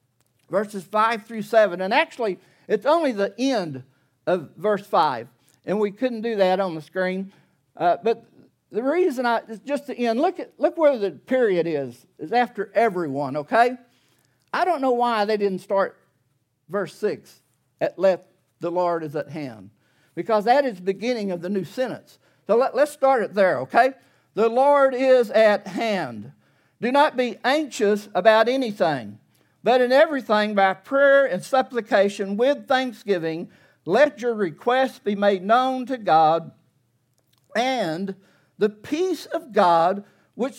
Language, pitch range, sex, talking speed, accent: English, 185-255 Hz, male, 155 wpm, American